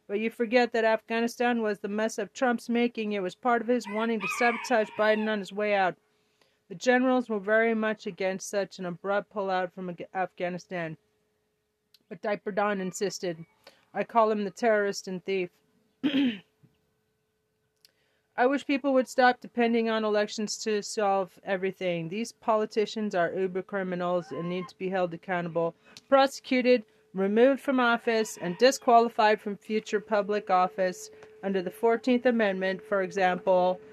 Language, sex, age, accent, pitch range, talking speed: English, female, 30-49, American, 195-240 Hz, 150 wpm